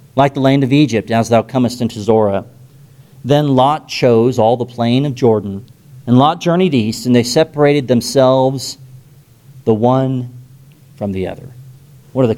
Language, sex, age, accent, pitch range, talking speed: English, male, 40-59, American, 115-135 Hz, 165 wpm